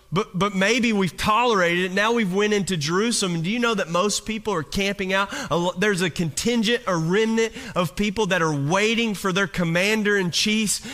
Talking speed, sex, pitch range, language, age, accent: 190 wpm, male, 130-210 Hz, English, 30-49, American